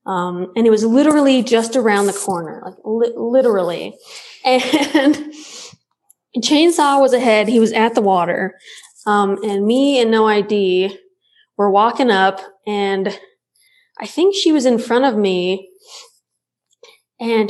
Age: 20-39